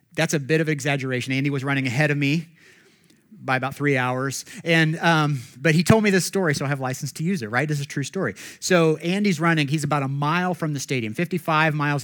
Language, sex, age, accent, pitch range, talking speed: English, male, 30-49, American, 130-170 Hz, 245 wpm